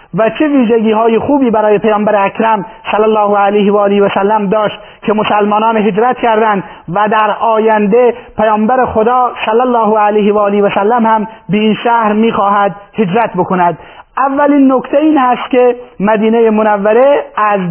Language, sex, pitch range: Persian, male, 205-240 Hz